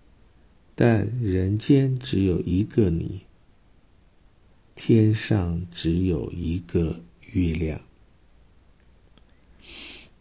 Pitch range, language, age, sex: 85-110 Hz, Chinese, 50-69, male